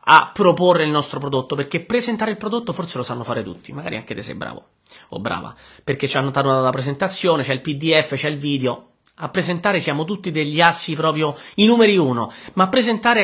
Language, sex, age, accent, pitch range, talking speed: Italian, male, 30-49, native, 145-195 Hz, 205 wpm